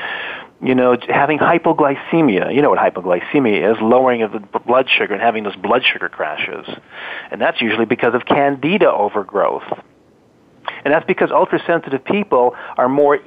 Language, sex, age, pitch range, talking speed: English, male, 40-59, 115-145 Hz, 155 wpm